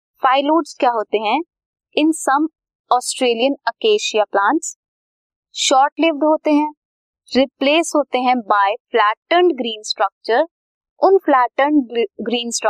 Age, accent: 20-39, native